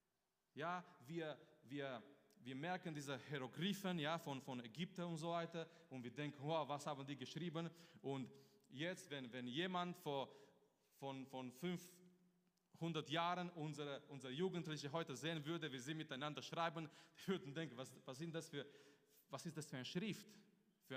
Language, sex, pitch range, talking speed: German, male, 135-185 Hz, 165 wpm